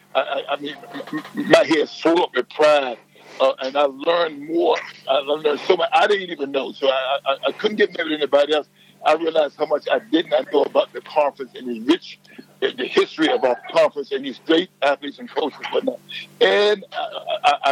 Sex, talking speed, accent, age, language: male, 210 wpm, American, 60-79, English